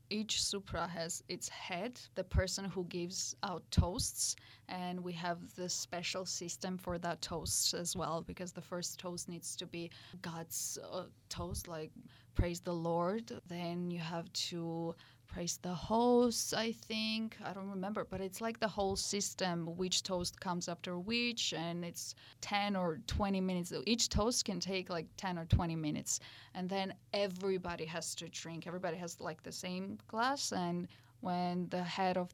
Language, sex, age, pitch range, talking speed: Russian, female, 20-39, 170-195 Hz, 165 wpm